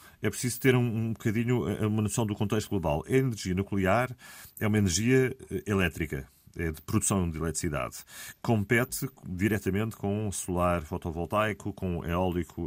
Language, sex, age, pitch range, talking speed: Portuguese, male, 40-59, 85-115 Hz, 140 wpm